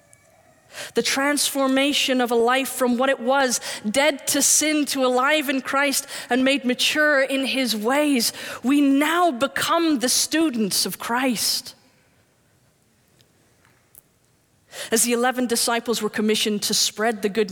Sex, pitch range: female, 225-275 Hz